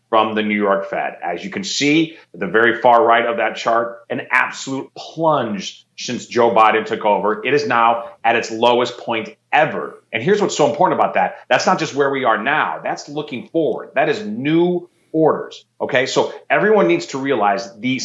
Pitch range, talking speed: 115-145 Hz, 200 wpm